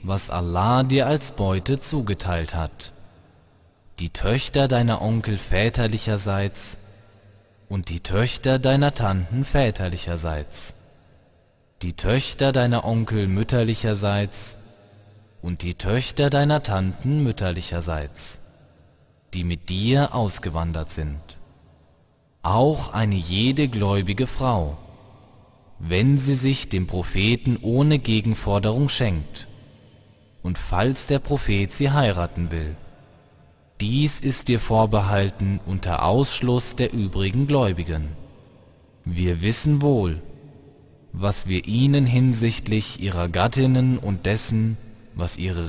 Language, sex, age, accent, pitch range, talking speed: German, male, 20-39, German, 90-125 Hz, 100 wpm